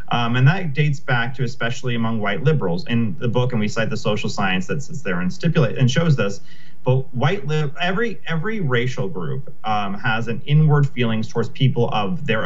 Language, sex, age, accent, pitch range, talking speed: English, male, 30-49, American, 115-155 Hz, 205 wpm